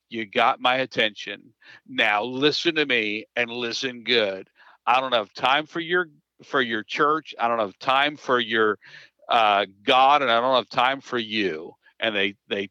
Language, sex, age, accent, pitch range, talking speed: English, male, 50-69, American, 110-145 Hz, 180 wpm